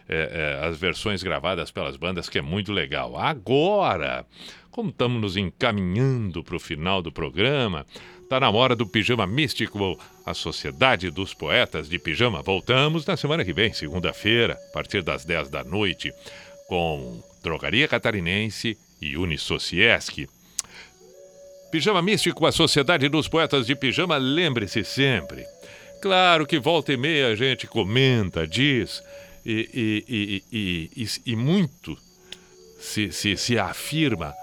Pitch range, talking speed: 90-140 Hz, 130 wpm